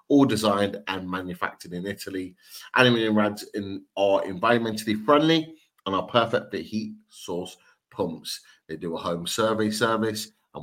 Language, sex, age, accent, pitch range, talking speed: English, male, 30-49, British, 90-115 Hz, 145 wpm